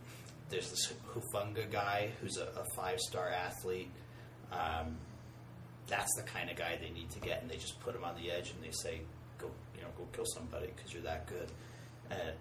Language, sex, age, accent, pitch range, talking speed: English, male, 30-49, American, 85-120 Hz, 200 wpm